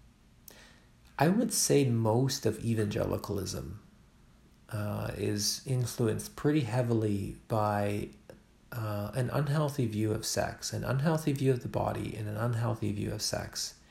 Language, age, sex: English, 40-59, male